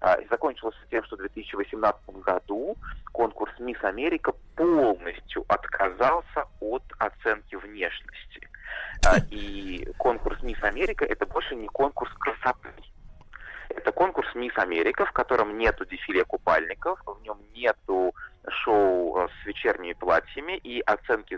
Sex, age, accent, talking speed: male, 30-49, native, 115 wpm